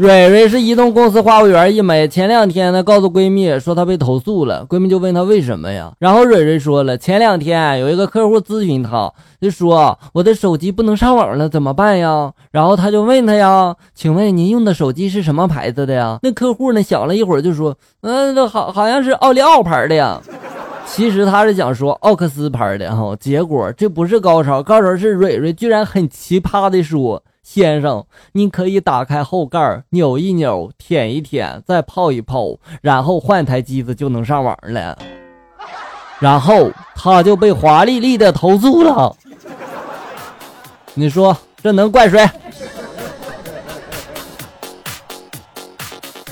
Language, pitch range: Chinese, 145-210 Hz